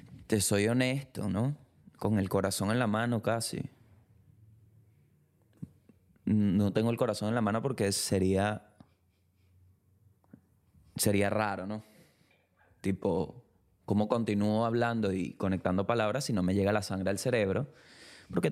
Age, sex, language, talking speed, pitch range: 20-39, male, Spanish, 125 wpm, 100-125 Hz